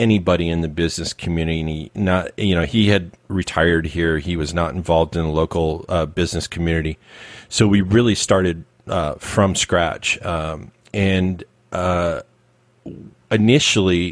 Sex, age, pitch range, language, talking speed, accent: male, 40-59, 85-100 Hz, English, 140 wpm, American